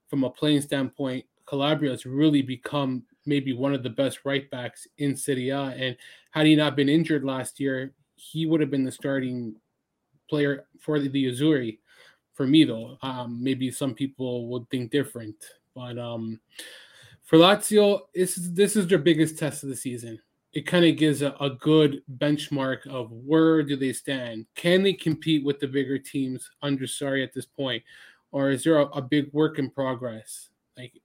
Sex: male